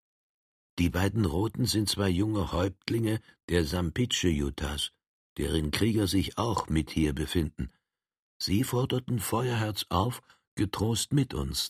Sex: male